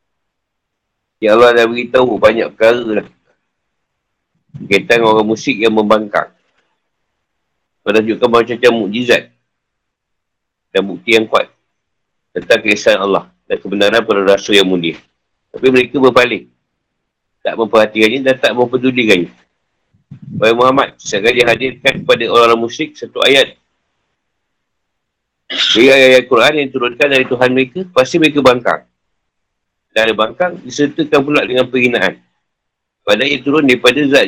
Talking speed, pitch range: 115 wpm, 105-130 Hz